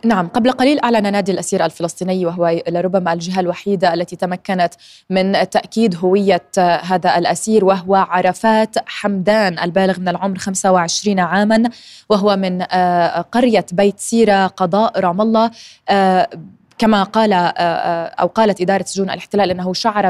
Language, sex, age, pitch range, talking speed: Arabic, female, 20-39, 185-215 Hz, 130 wpm